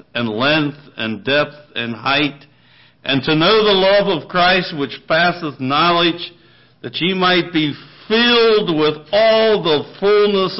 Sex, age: male, 60-79